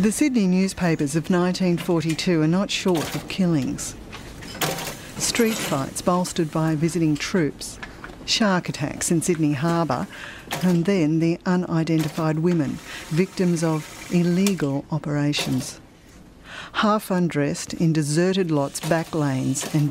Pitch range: 150-185 Hz